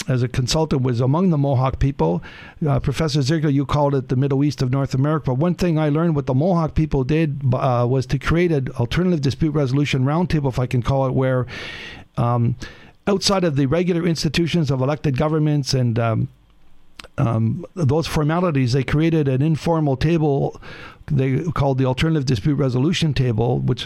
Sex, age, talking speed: male, 60-79, 185 wpm